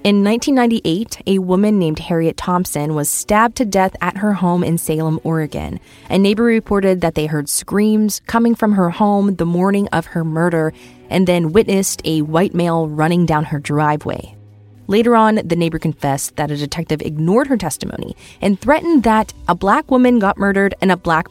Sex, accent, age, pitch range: female, American, 20-39, 160-205 Hz